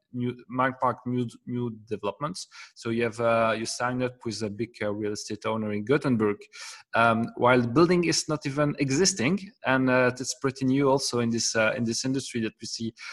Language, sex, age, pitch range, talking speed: English, male, 30-49, 115-145 Hz, 205 wpm